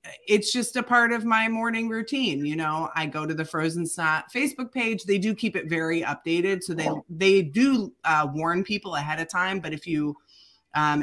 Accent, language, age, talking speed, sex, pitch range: American, English, 30-49, 205 wpm, female, 150-205 Hz